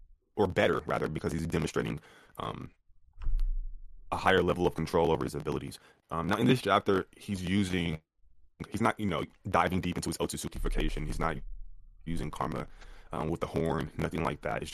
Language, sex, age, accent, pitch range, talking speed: English, male, 20-39, American, 75-95 Hz, 175 wpm